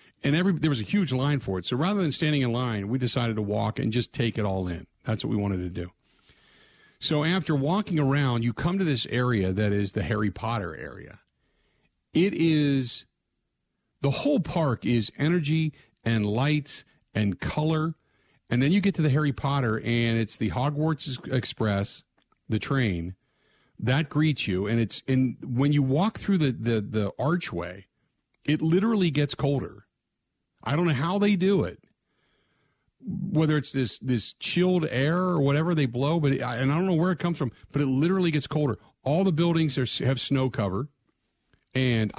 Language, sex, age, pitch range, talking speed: English, male, 50-69, 110-155 Hz, 185 wpm